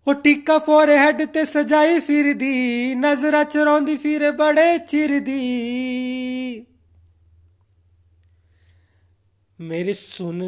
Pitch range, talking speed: 215-290 Hz, 90 wpm